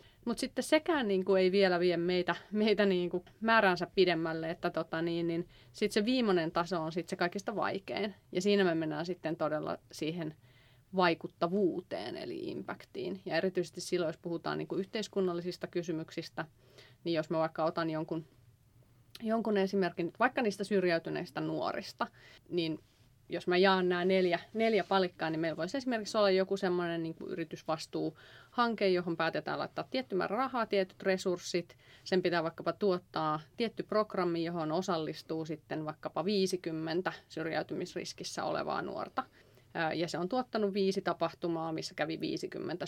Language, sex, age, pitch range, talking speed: Finnish, female, 30-49, 160-195 Hz, 145 wpm